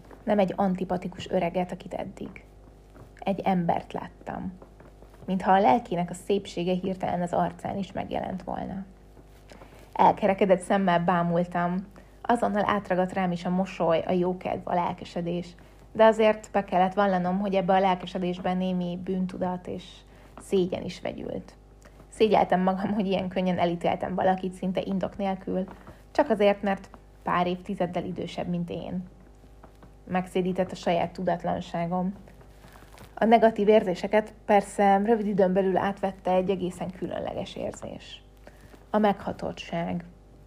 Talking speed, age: 125 wpm, 20-39